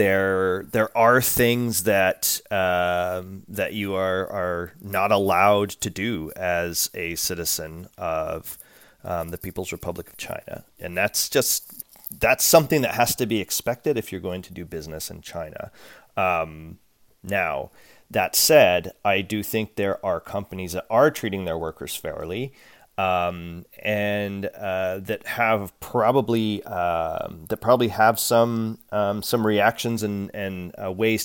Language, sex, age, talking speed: English, male, 30-49, 150 wpm